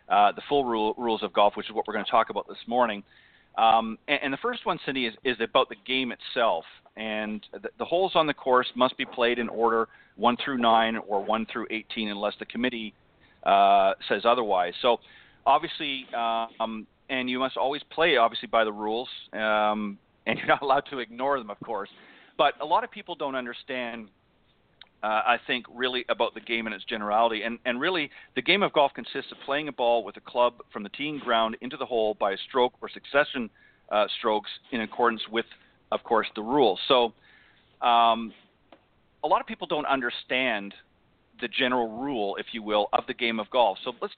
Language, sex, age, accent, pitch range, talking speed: English, male, 40-59, American, 110-125 Hz, 205 wpm